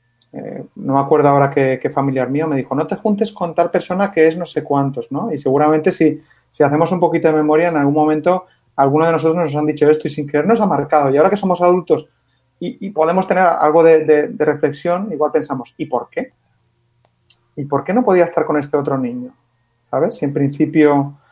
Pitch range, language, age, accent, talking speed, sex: 130-155 Hz, Spanish, 30-49, Spanish, 225 wpm, male